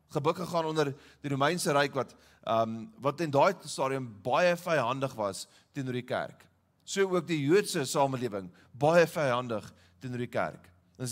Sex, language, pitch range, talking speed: male, English, 130-175 Hz, 165 wpm